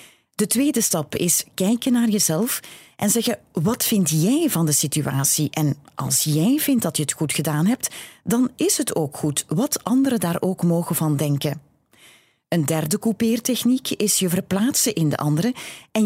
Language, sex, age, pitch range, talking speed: Dutch, female, 30-49, 155-220 Hz, 175 wpm